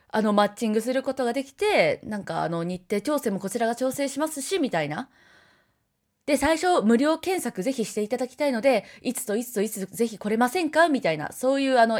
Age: 20-39